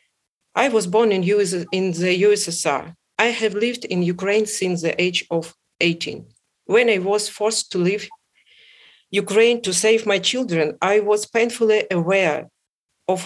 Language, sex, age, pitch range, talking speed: Ukrainian, female, 40-59, 175-220 Hz, 155 wpm